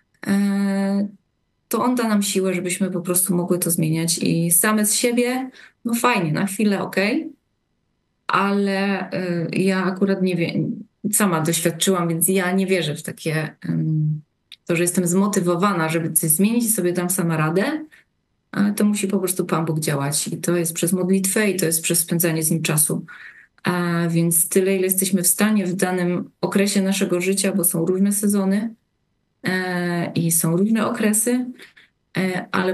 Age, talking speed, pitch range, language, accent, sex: 20-39, 160 wpm, 170-200 Hz, Polish, native, female